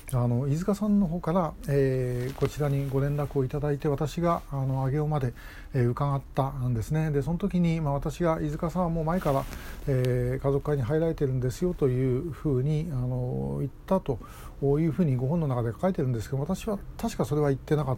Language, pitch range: Japanese, 130-160 Hz